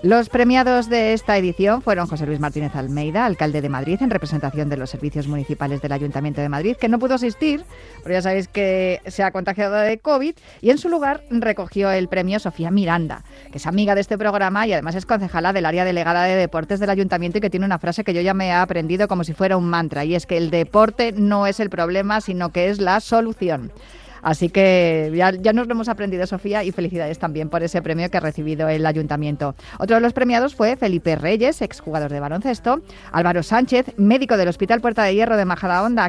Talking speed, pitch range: 220 wpm, 170-225 Hz